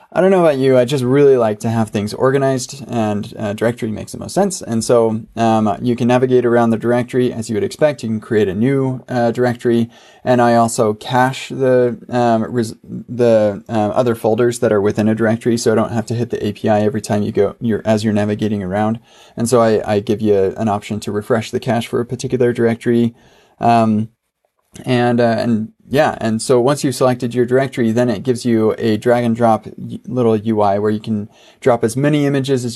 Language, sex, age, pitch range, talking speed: English, male, 20-39, 110-125 Hz, 220 wpm